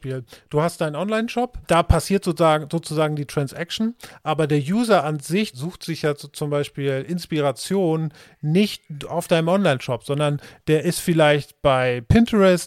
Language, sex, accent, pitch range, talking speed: German, male, German, 145-180 Hz, 145 wpm